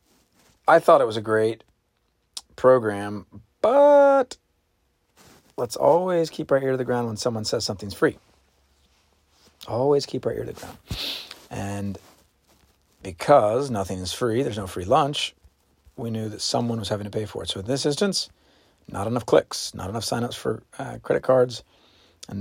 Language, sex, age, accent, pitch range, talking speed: English, male, 40-59, American, 90-130 Hz, 165 wpm